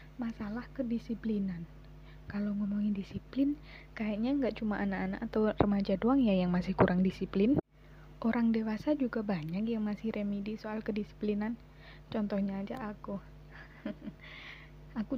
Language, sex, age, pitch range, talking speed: Indonesian, female, 20-39, 180-220 Hz, 120 wpm